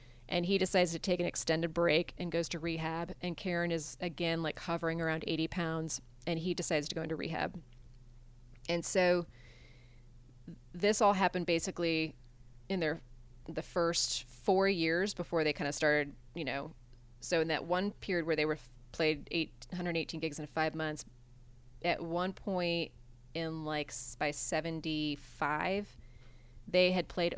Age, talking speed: 20-39, 160 wpm